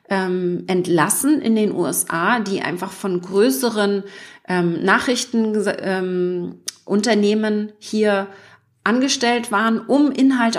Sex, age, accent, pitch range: female, 30-49, German, 185-230 Hz